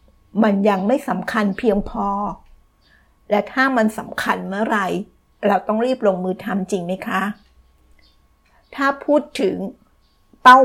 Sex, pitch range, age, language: female, 195-235 Hz, 60-79, Thai